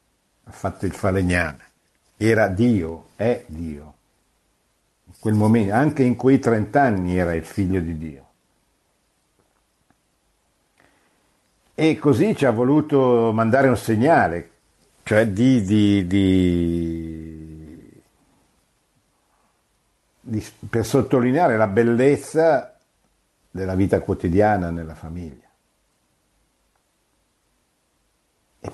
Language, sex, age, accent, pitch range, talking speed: Italian, male, 60-79, native, 90-110 Hz, 90 wpm